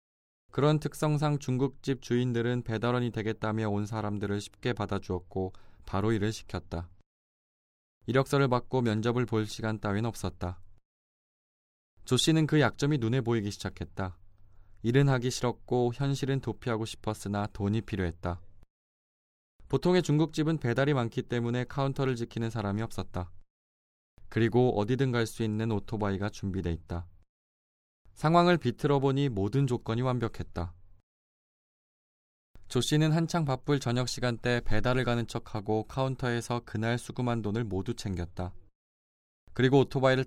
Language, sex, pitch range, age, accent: Korean, male, 95-130 Hz, 20-39, native